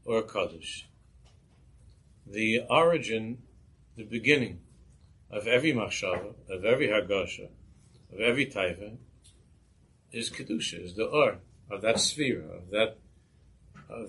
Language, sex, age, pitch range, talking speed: English, male, 60-79, 100-125 Hz, 110 wpm